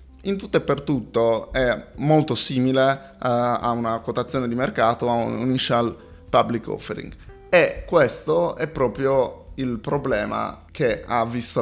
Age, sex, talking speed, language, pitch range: 20-39, male, 145 wpm, Italian, 115-135 Hz